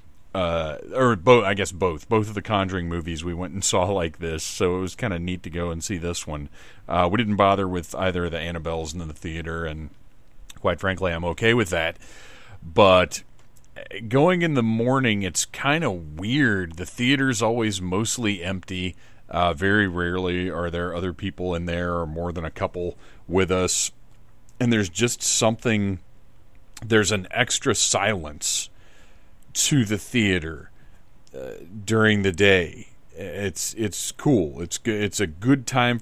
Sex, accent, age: male, American, 40-59